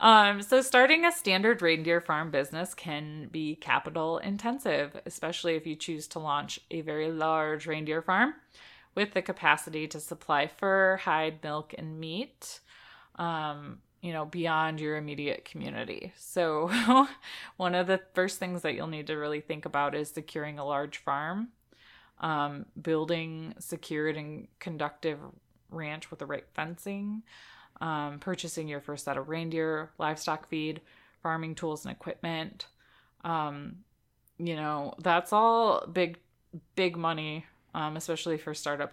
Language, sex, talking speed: English, female, 145 wpm